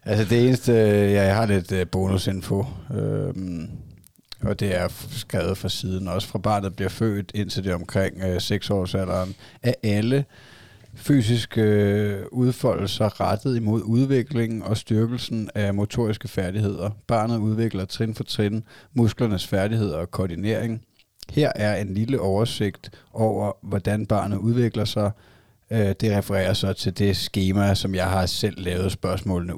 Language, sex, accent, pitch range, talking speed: Danish, male, native, 95-110 Hz, 145 wpm